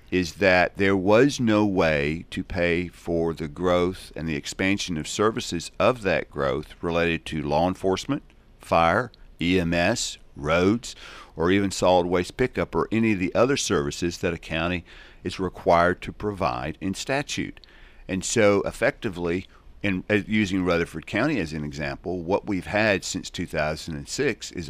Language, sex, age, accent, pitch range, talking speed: English, male, 50-69, American, 85-105 Hz, 150 wpm